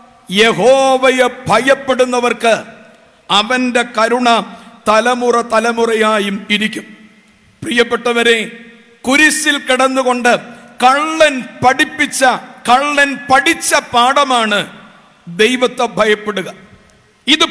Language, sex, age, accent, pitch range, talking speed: English, male, 50-69, Indian, 220-270 Hz, 70 wpm